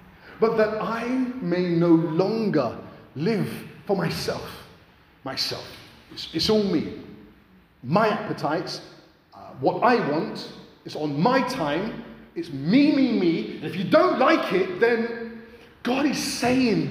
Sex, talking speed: male, 130 wpm